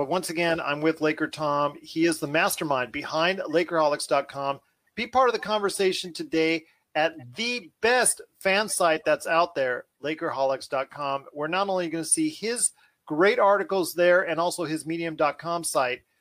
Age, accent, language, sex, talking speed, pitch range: 40-59, American, English, male, 160 wpm, 155-210 Hz